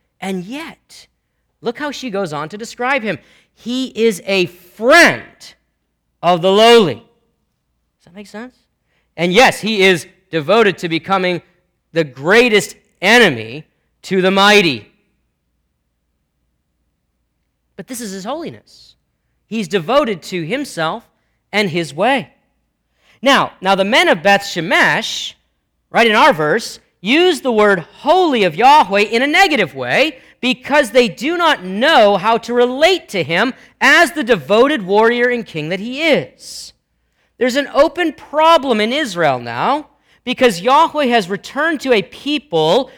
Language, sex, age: English, male, 40-59